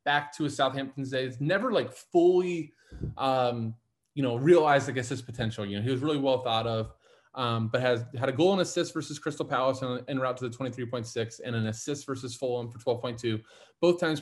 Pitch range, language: 120-155 Hz, English